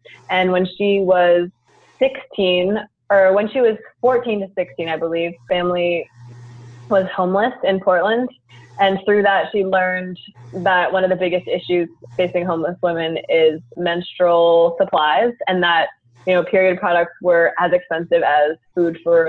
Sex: female